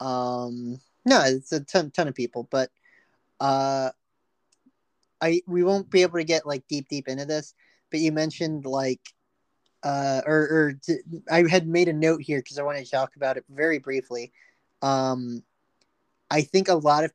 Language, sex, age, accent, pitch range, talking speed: English, male, 30-49, American, 140-180 Hz, 180 wpm